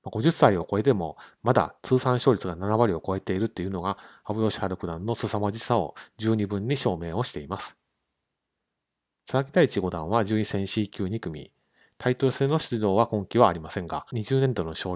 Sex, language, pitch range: male, Japanese, 95-120 Hz